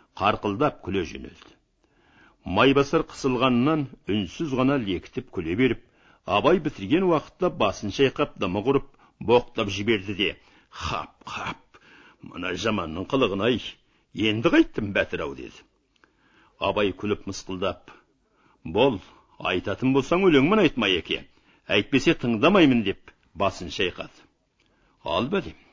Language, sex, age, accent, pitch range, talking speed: Russian, male, 60-79, Turkish, 95-130 Hz, 100 wpm